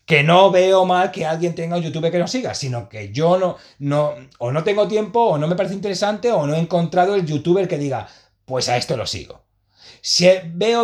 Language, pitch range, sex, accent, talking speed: Spanish, 125-185 Hz, male, Spanish, 225 wpm